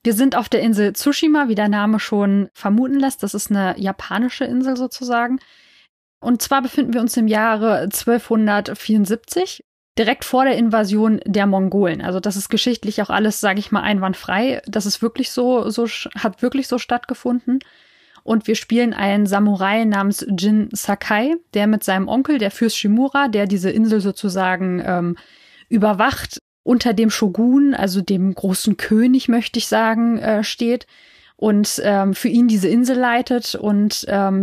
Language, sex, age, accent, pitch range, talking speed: German, female, 20-39, German, 200-240 Hz, 155 wpm